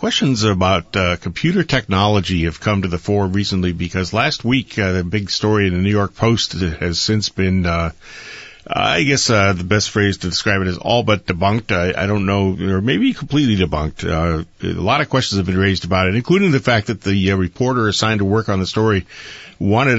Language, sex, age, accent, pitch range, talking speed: English, male, 40-59, American, 90-105 Hz, 215 wpm